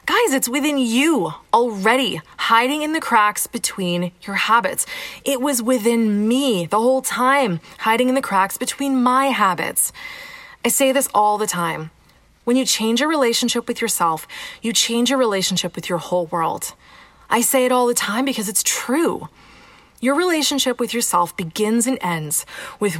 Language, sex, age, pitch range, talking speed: English, female, 20-39, 190-280 Hz, 165 wpm